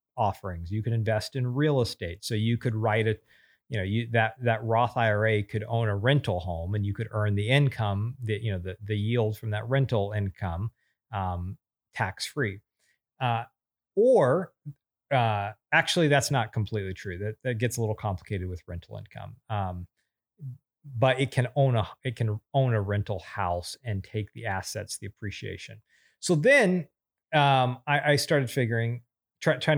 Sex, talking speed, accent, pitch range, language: male, 175 wpm, American, 105-135 Hz, English